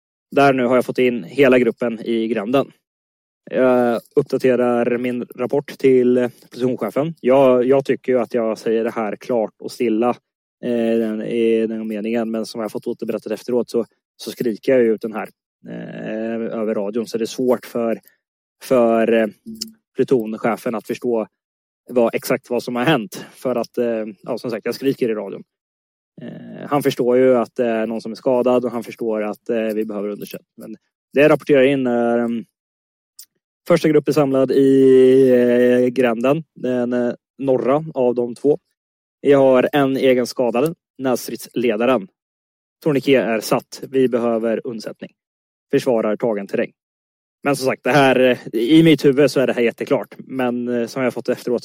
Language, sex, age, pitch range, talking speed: Swedish, male, 20-39, 115-130 Hz, 155 wpm